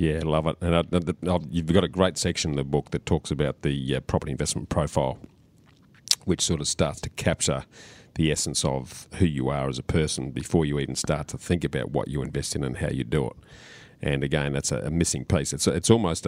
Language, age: English, 40-59